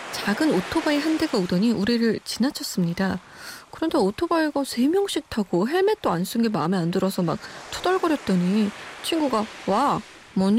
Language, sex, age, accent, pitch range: Korean, female, 20-39, native, 195-285 Hz